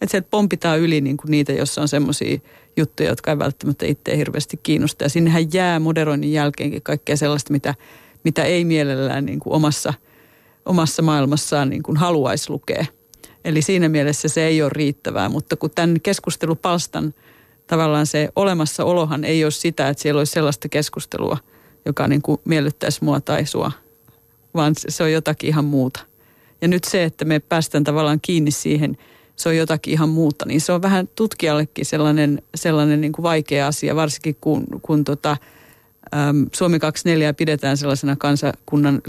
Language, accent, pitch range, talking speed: Finnish, native, 145-165 Hz, 165 wpm